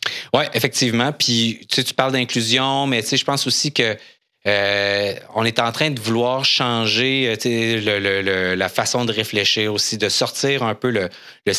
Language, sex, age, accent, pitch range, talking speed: French, male, 30-49, Canadian, 105-130 Hz, 200 wpm